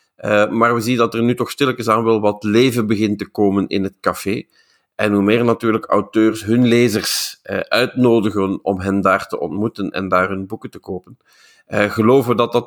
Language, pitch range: Dutch, 100-115 Hz